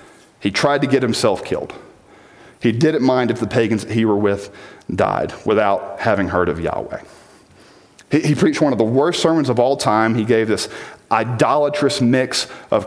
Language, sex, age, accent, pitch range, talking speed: English, male, 40-59, American, 105-130 Hz, 175 wpm